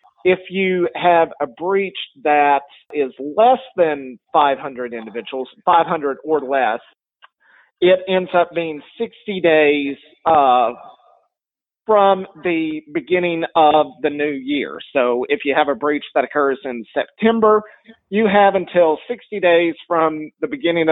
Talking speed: 130 wpm